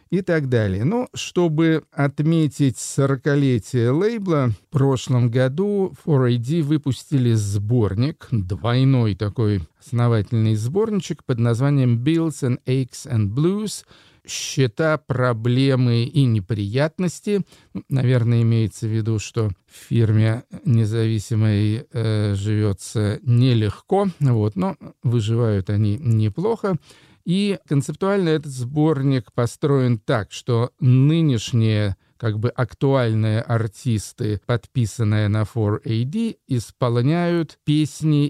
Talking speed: 100 wpm